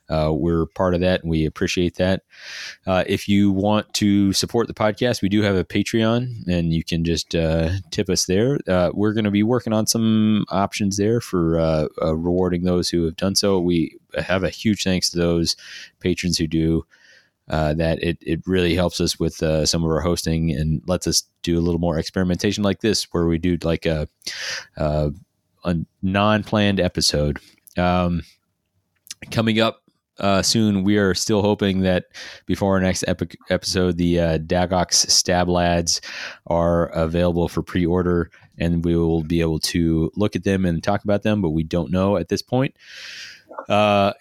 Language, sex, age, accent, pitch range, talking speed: English, male, 30-49, American, 85-105 Hz, 185 wpm